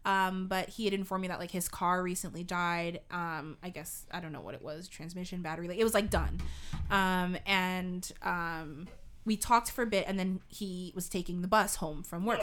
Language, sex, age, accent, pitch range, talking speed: English, female, 20-39, American, 180-225 Hz, 220 wpm